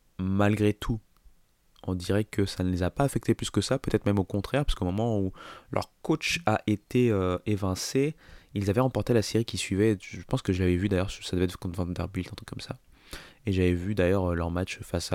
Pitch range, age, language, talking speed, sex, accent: 90-105 Hz, 20-39, French, 225 wpm, male, French